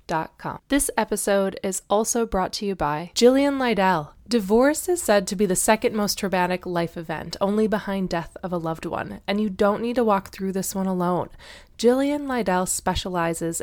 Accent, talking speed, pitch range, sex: American, 185 wpm, 170-220 Hz, female